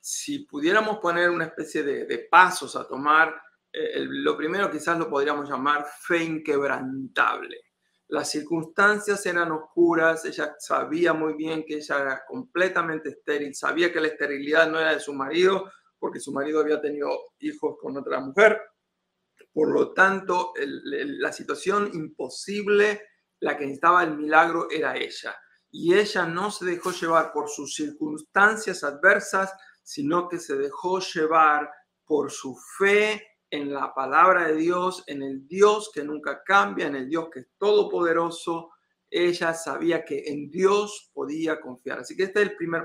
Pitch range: 150-200 Hz